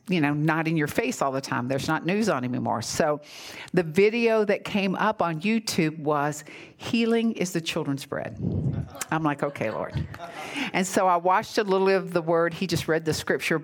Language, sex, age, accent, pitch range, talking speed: English, female, 60-79, American, 145-185 Hz, 200 wpm